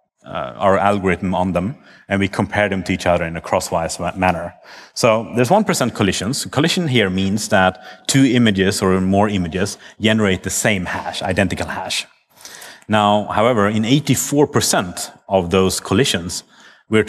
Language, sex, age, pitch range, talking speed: English, male, 30-49, 95-115 Hz, 150 wpm